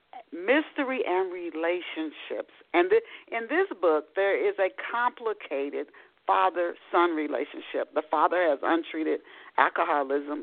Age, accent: 50-69, American